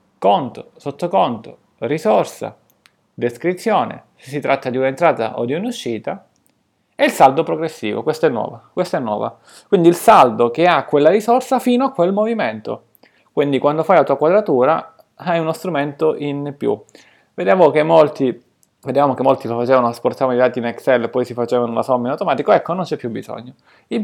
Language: Italian